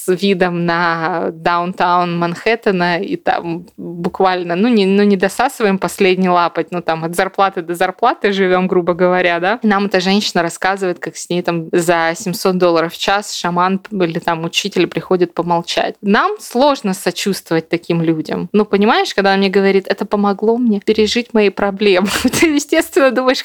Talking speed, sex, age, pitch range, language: 165 wpm, female, 20-39, 175-220 Hz, Russian